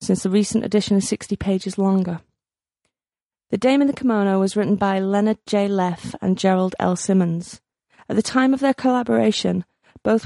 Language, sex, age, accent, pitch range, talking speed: English, female, 30-49, British, 185-210 Hz, 175 wpm